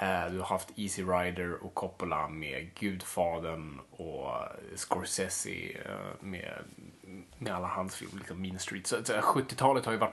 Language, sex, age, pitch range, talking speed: Swedish, male, 30-49, 100-125 Hz, 140 wpm